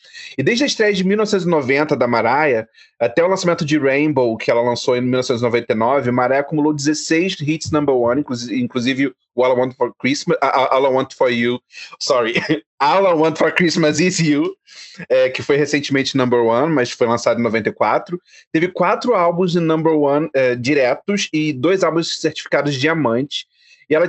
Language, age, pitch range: Portuguese, 30-49, 135-175 Hz